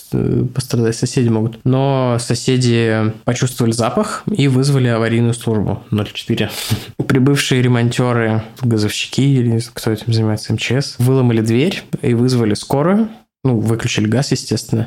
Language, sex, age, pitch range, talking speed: Russian, male, 20-39, 115-135 Hz, 115 wpm